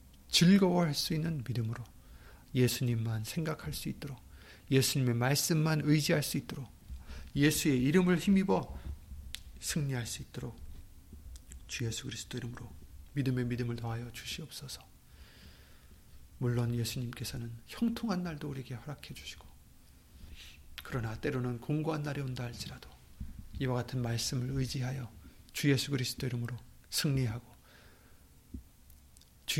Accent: native